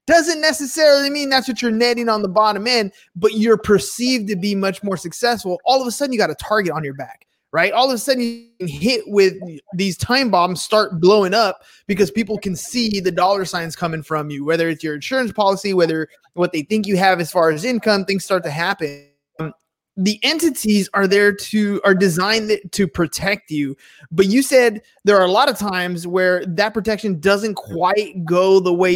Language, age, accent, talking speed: English, 20-39, American, 205 wpm